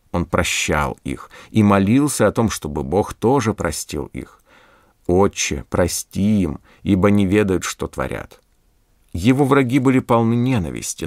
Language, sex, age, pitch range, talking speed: Russian, male, 50-69, 85-115 Hz, 135 wpm